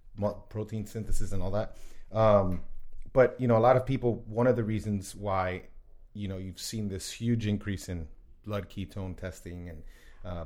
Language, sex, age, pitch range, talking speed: English, male, 30-49, 90-115 Hz, 180 wpm